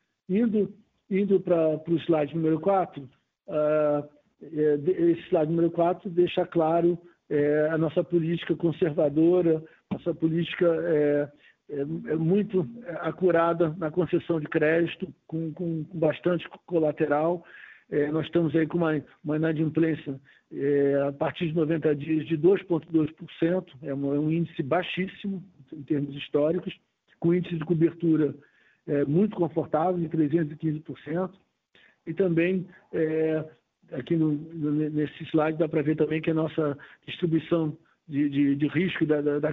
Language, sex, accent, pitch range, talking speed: Portuguese, male, Brazilian, 150-170 Hz, 125 wpm